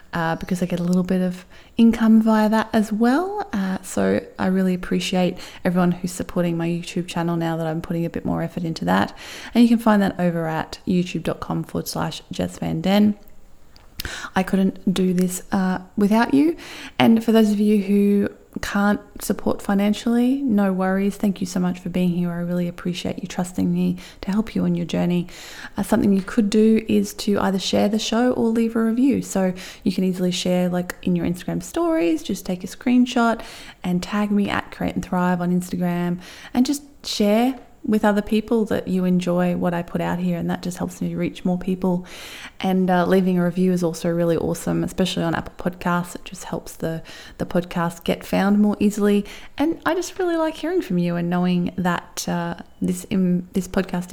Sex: female